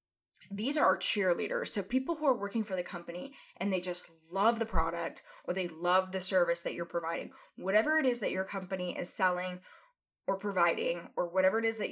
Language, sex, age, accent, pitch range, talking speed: English, female, 10-29, American, 185-260 Hz, 205 wpm